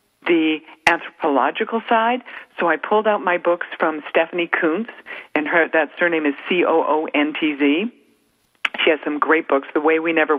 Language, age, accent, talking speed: English, 50-69, American, 155 wpm